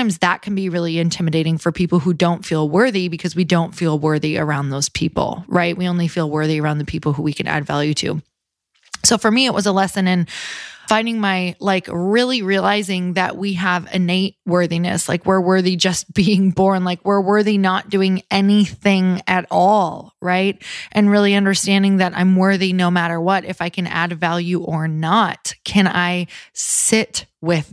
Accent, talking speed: American, 185 wpm